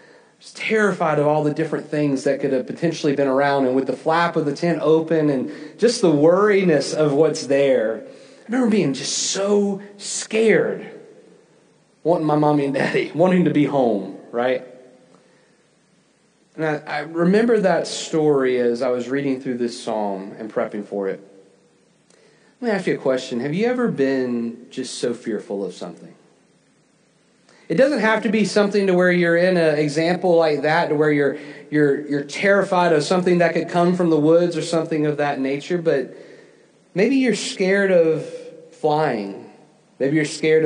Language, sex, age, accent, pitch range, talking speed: English, male, 30-49, American, 135-170 Hz, 175 wpm